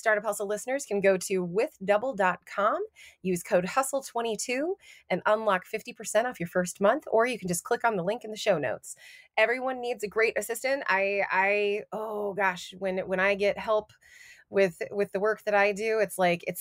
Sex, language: female, English